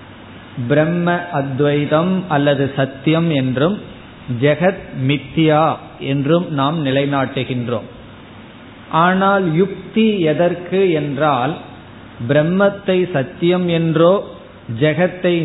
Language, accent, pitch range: Tamil, native, 135-175 Hz